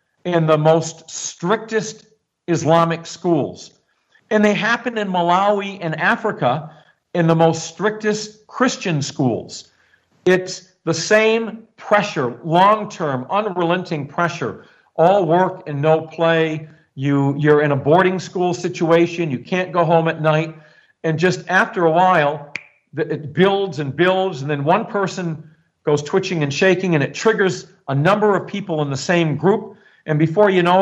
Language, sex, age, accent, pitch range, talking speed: English, male, 50-69, American, 155-190 Hz, 150 wpm